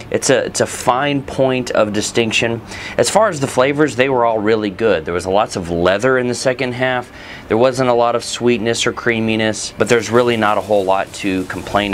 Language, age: English, 30-49